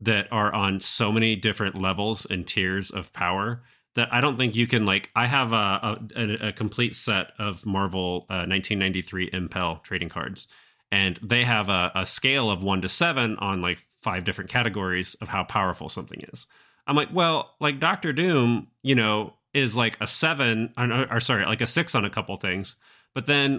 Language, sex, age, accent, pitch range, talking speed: English, male, 30-49, American, 95-120 Hz, 195 wpm